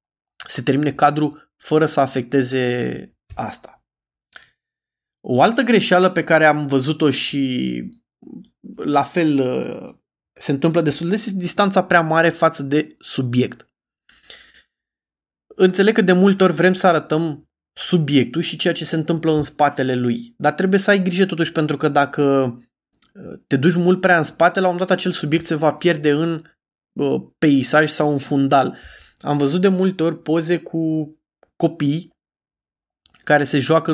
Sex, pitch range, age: male, 145-185 Hz, 20-39